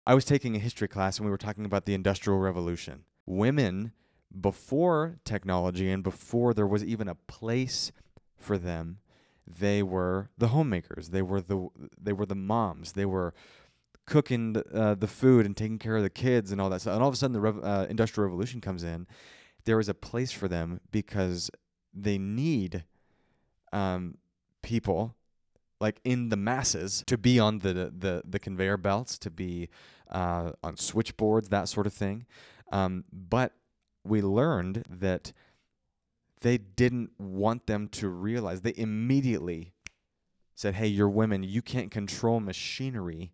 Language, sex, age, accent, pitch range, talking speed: English, male, 30-49, American, 95-115 Hz, 165 wpm